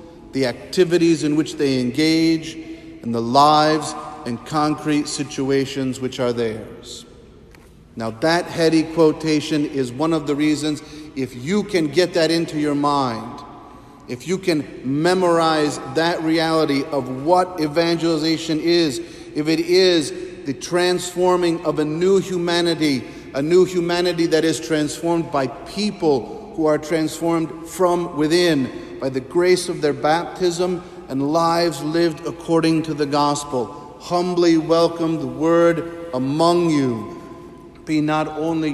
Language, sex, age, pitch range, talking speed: English, male, 40-59, 150-175 Hz, 135 wpm